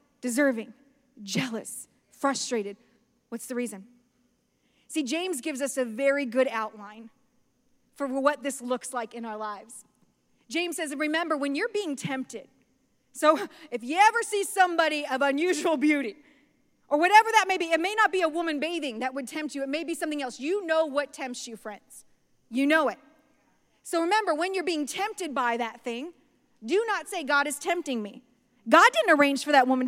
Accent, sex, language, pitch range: American, female, English, 265-335 Hz